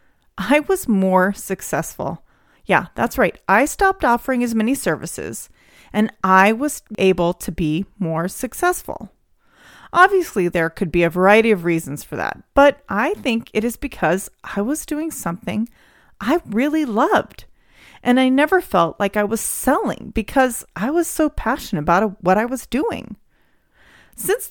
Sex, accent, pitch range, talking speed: female, American, 180-280 Hz, 155 wpm